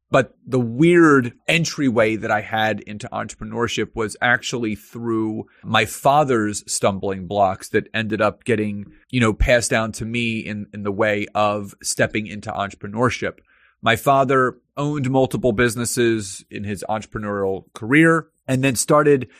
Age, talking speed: 30-49, 140 wpm